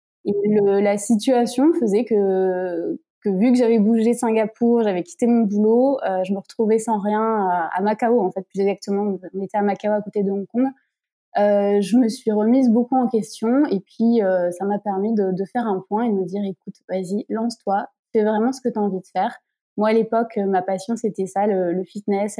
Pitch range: 195-230 Hz